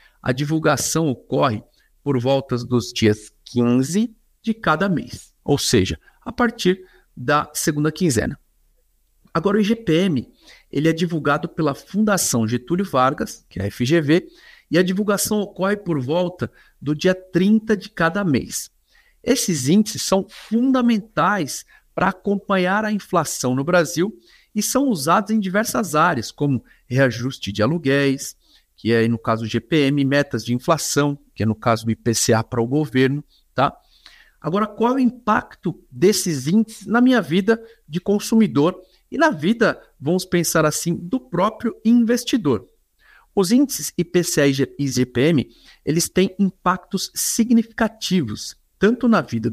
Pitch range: 140-215 Hz